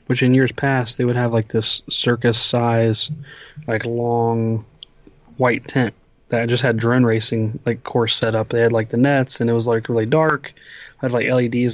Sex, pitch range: male, 115-130 Hz